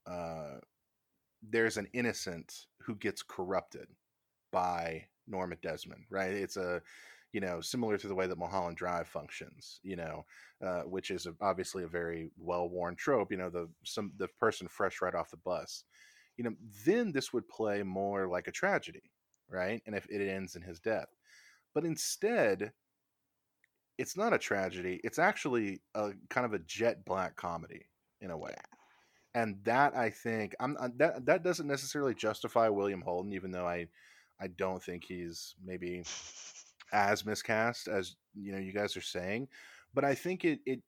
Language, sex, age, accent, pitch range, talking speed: English, male, 30-49, American, 90-115 Hz, 165 wpm